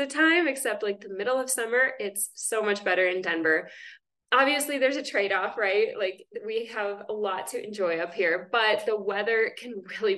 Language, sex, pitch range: English, female, 200-295 Hz